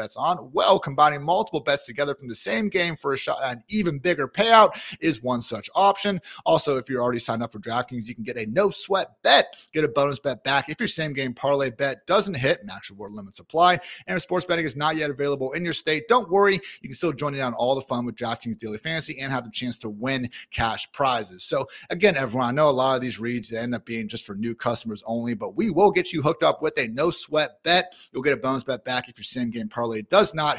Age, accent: 30-49, American